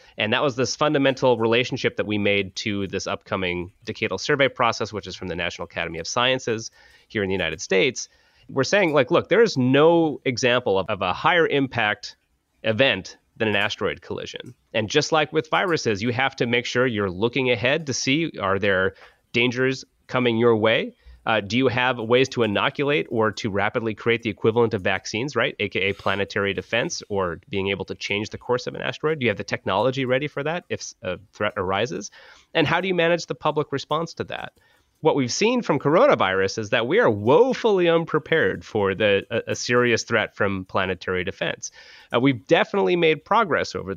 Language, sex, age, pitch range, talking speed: English, male, 30-49, 100-140 Hz, 195 wpm